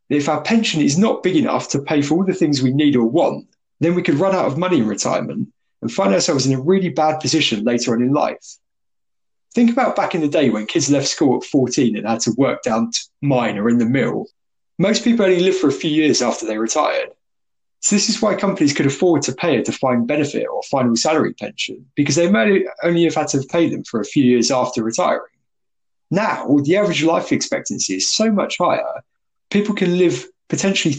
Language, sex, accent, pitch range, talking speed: English, male, British, 125-190 Hz, 225 wpm